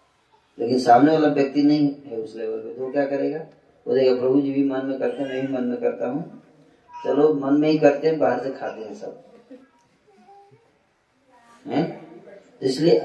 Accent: native